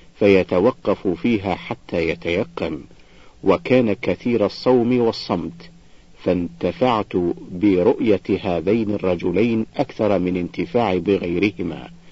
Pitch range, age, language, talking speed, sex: 90-110 Hz, 50-69, Arabic, 80 wpm, male